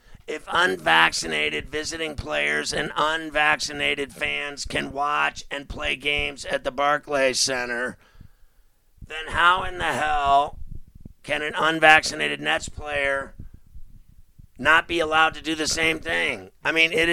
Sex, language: male, English